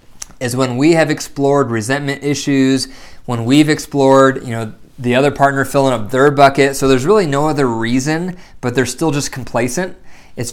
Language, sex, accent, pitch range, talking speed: English, male, American, 120-145 Hz, 175 wpm